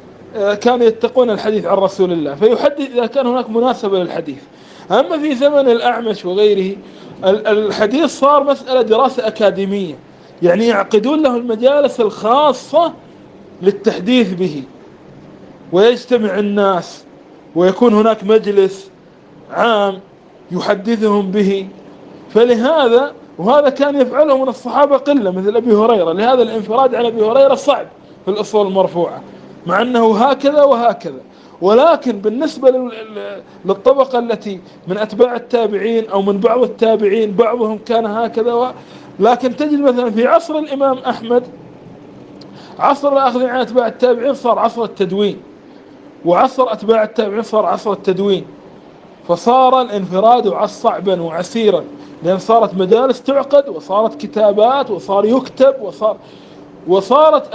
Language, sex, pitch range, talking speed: Arabic, male, 205-260 Hz, 115 wpm